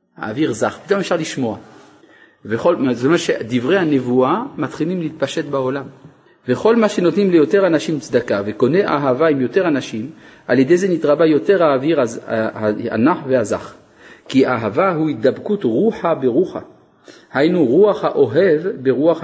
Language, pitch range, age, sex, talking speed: Hebrew, 130-175 Hz, 50-69, male, 130 wpm